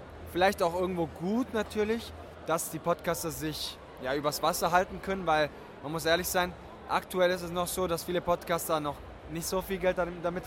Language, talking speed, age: German, 185 wpm, 20-39